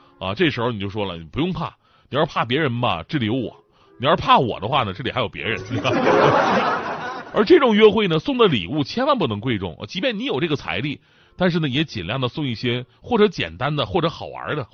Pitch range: 120-185 Hz